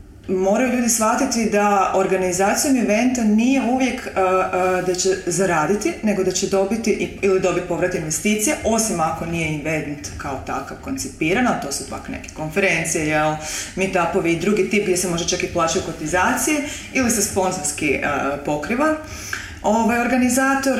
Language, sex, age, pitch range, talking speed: English, female, 30-49, 165-220 Hz, 155 wpm